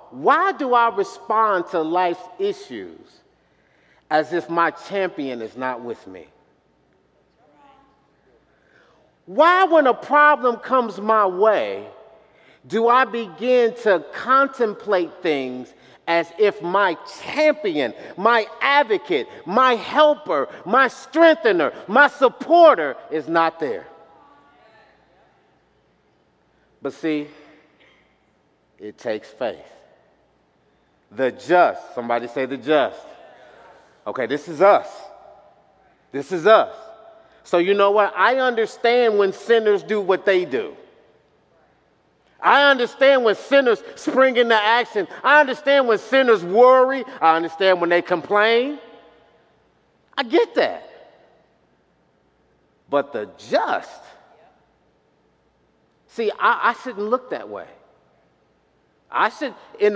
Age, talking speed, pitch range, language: 50-69, 105 wpm, 170-270 Hz, English